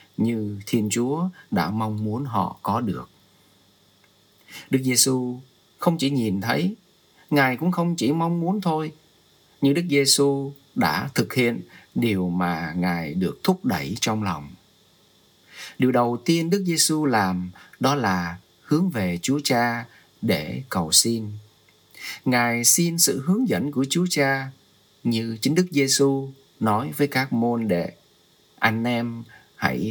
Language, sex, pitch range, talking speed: Vietnamese, male, 105-145 Hz, 140 wpm